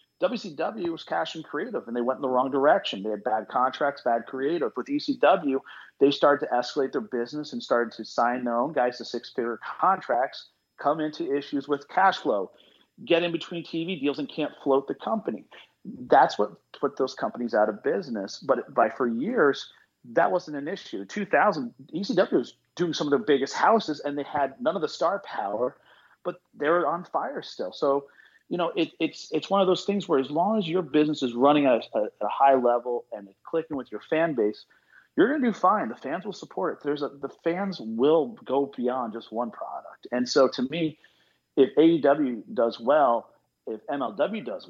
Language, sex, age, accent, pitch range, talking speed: English, male, 40-59, American, 120-160 Hz, 205 wpm